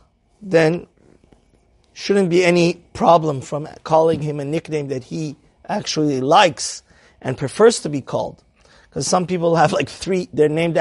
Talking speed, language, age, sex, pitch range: 150 wpm, English, 30-49, male, 145-180 Hz